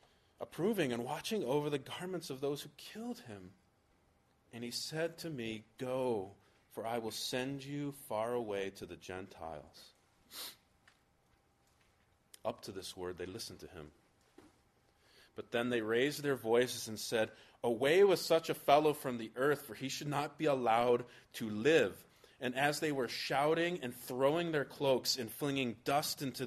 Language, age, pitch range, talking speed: English, 30-49, 115-145 Hz, 165 wpm